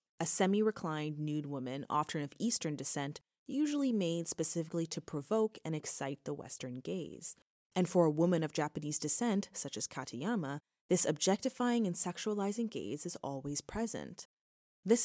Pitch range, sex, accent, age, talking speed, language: 150-210 Hz, female, American, 20-39, 150 wpm, English